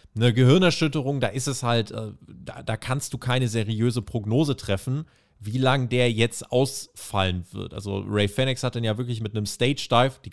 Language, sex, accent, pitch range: German, male, German, 105-130 Hz